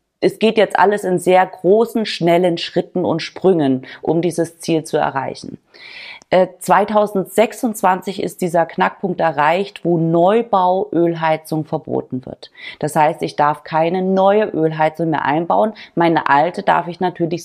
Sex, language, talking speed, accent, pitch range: female, German, 135 wpm, German, 155-195 Hz